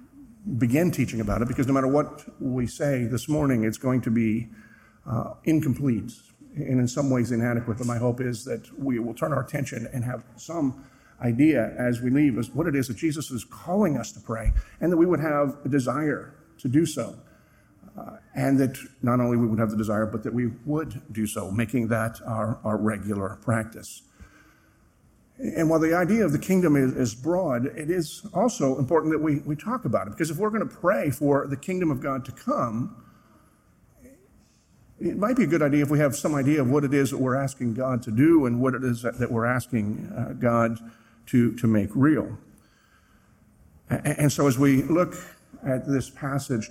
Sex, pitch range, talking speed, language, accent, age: male, 115-150 Hz, 200 wpm, English, American, 50-69